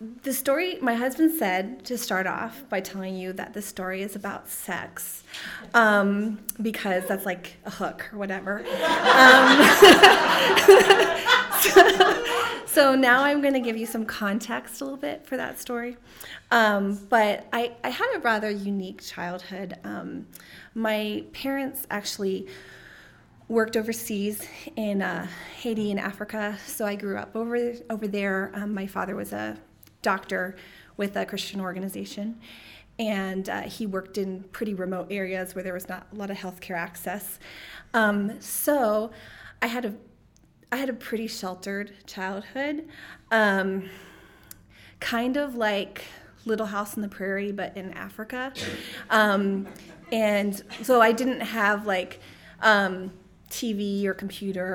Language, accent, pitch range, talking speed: English, American, 190-235 Hz, 140 wpm